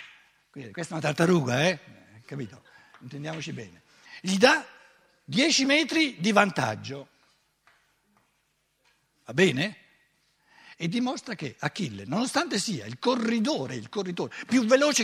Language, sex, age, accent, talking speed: Italian, male, 60-79, native, 110 wpm